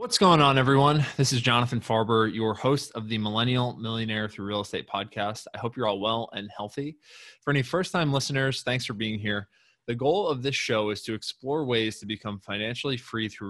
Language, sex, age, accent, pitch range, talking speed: English, male, 20-39, American, 110-135 Hz, 210 wpm